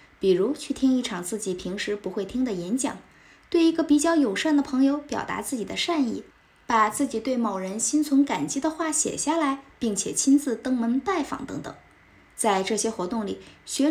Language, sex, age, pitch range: Chinese, female, 20-39, 210-290 Hz